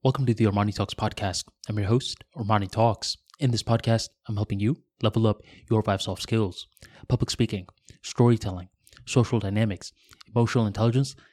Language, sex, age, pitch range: English, male, 20-39, 105-135 Hz